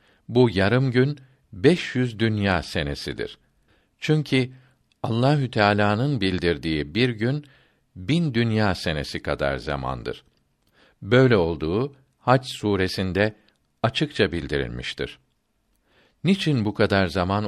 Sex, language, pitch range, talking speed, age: male, Turkish, 95-130 Hz, 95 wpm, 50-69